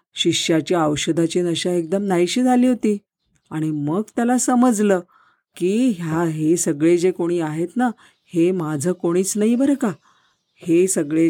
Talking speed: 145 wpm